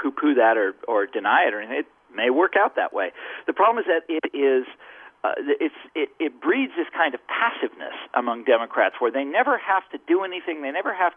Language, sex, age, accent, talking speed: English, male, 50-69, American, 220 wpm